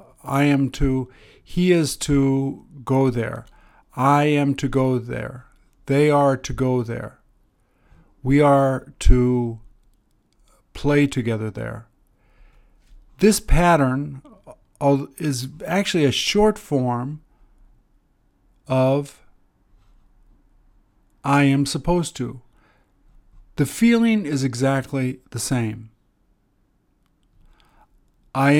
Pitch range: 115-145 Hz